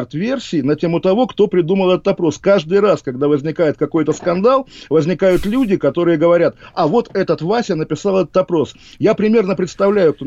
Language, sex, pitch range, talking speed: Russian, male, 150-195 Hz, 170 wpm